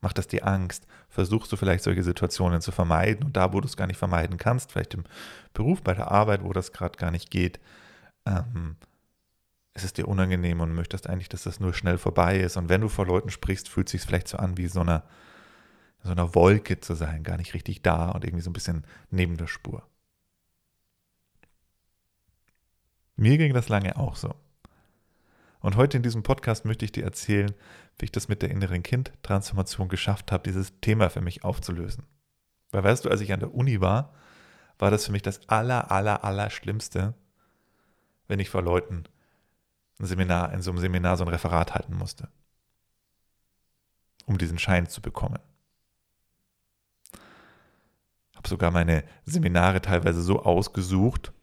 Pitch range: 90-105 Hz